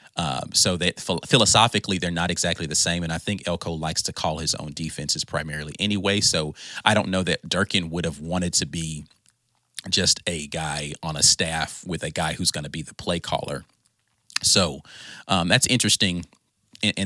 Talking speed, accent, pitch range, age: 185 wpm, American, 85-120 Hz, 30-49